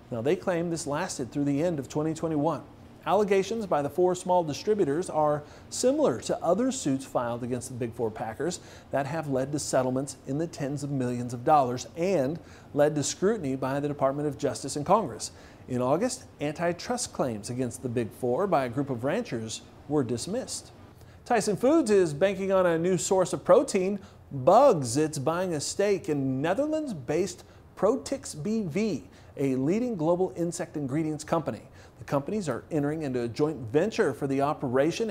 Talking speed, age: 175 wpm, 40-59